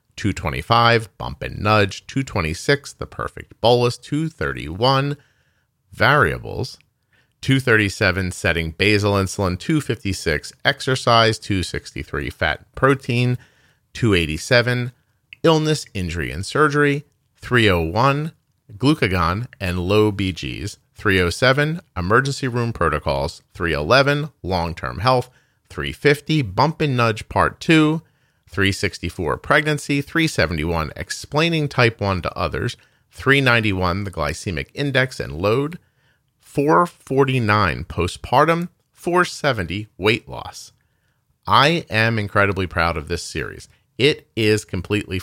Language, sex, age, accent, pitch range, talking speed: English, male, 40-59, American, 95-135 Hz, 95 wpm